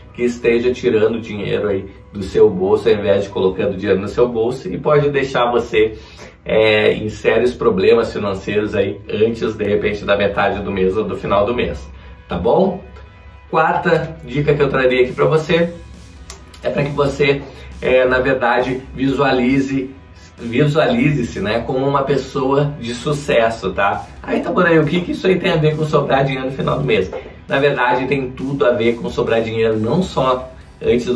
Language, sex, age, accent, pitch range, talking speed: Portuguese, male, 20-39, Brazilian, 115-145 Hz, 185 wpm